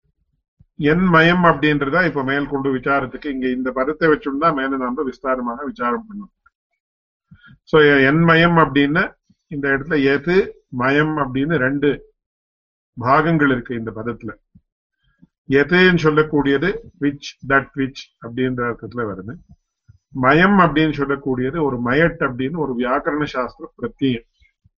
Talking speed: 105 wpm